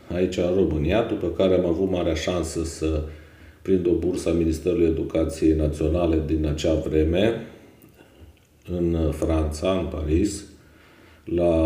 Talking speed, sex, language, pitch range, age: 130 wpm, male, Romanian, 75-85 Hz, 40-59